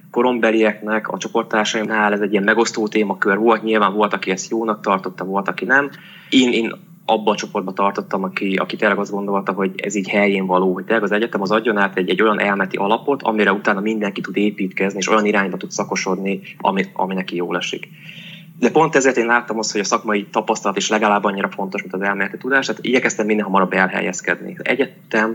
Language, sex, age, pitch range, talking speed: Hungarian, male, 20-39, 100-120 Hz, 200 wpm